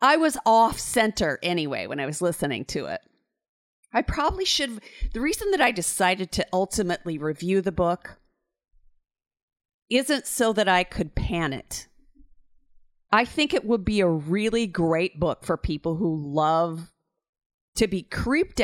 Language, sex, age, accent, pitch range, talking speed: English, female, 40-59, American, 165-225 Hz, 150 wpm